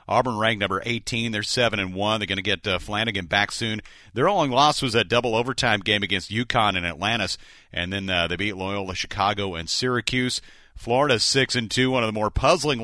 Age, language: 40-59, English